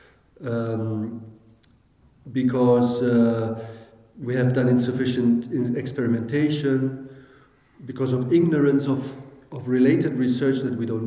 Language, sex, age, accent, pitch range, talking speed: English, male, 40-59, German, 120-150 Hz, 100 wpm